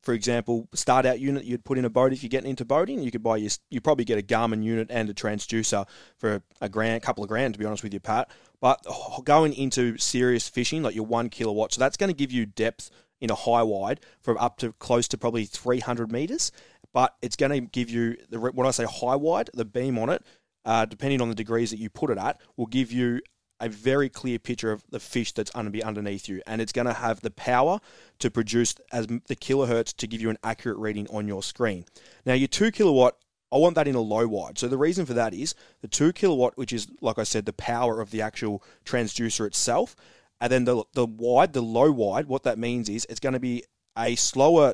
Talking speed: 240 wpm